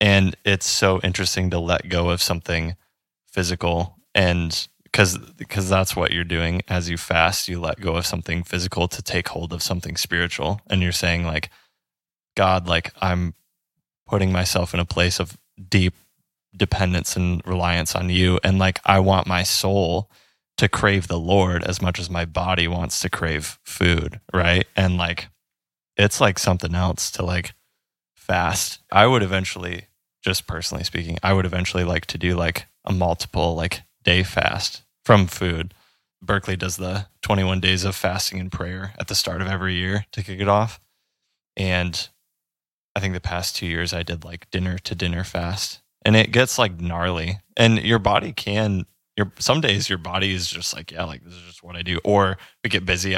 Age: 20-39